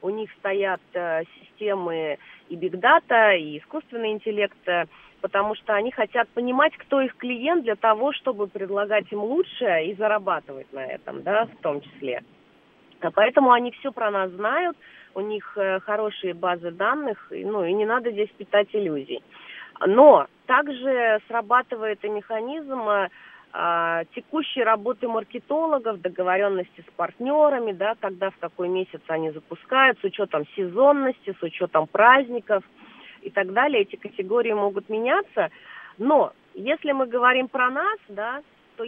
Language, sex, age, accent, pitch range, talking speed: Russian, female, 30-49, native, 190-255 Hz, 135 wpm